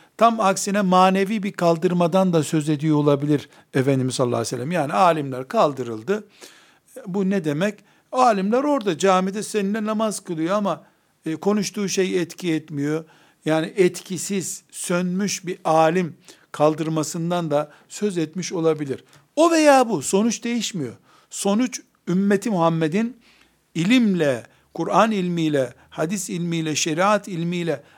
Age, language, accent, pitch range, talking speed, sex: 60-79, Turkish, native, 160-205 Hz, 120 wpm, male